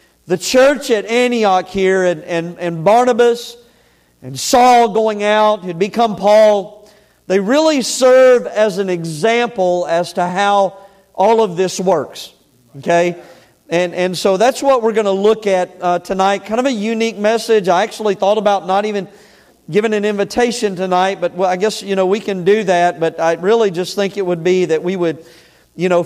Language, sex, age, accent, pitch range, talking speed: English, male, 40-59, American, 155-205 Hz, 185 wpm